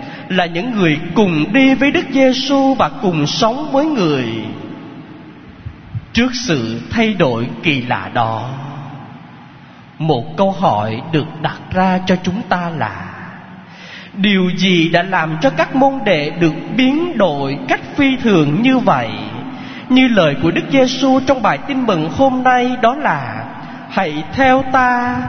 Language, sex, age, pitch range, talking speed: Vietnamese, male, 20-39, 155-260 Hz, 145 wpm